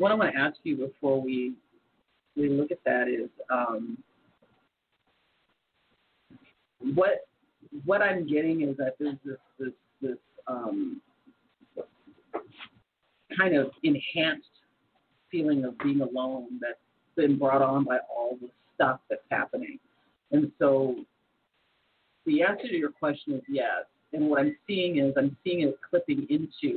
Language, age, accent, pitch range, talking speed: English, 40-59, American, 135-200 Hz, 135 wpm